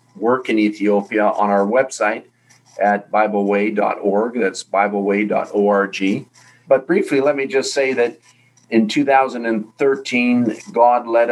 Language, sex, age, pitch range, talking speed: English, male, 50-69, 105-130 Hz, 110 wpm